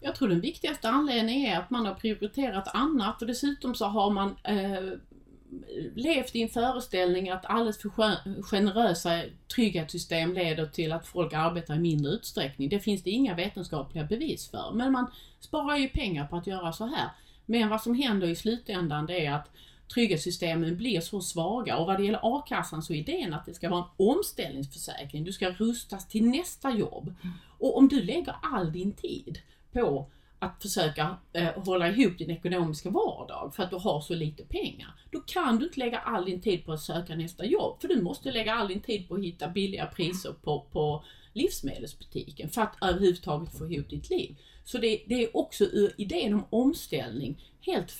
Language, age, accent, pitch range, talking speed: Swedish, 30-49, native, 170-230 Hz, 190 wpm